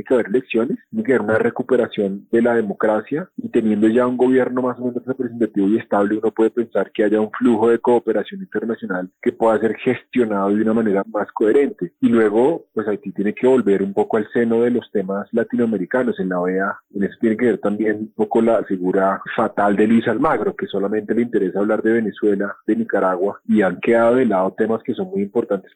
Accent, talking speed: Colombian, 215 wpm